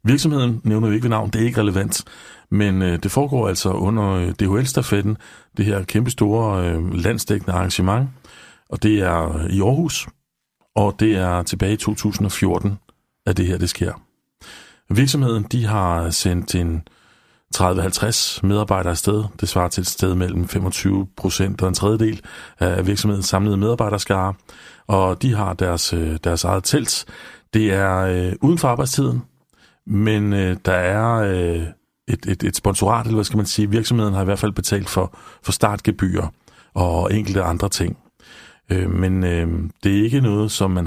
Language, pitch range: Danish, 90-110 Hz